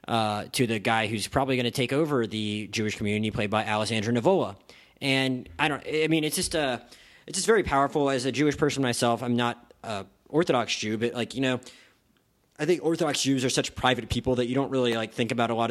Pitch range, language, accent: 110-135 Hz, English, American